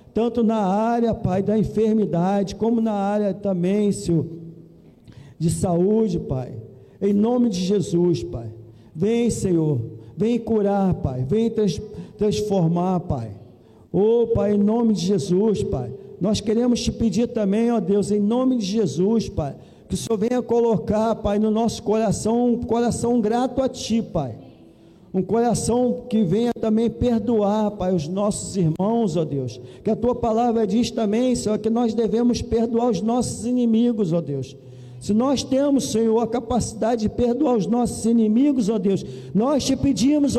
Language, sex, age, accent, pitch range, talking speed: Portuguese, male, 50-69, Brazilian, 190-240 Hz, 155 wpm